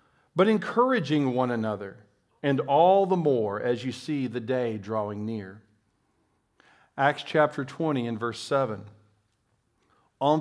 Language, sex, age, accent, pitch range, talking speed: English, male, 50-69, American, 120-165 Hz, 125 wpm